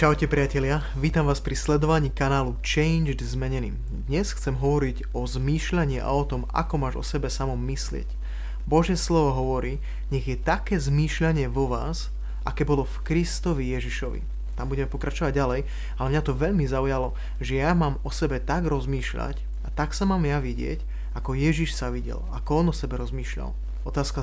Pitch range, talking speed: 125-150 Hz, 170 wpm